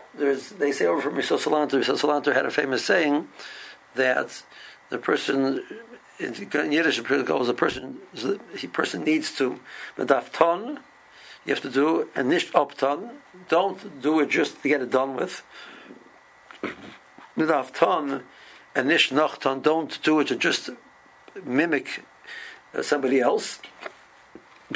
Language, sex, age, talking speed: English, male, 60-79, 115 wpm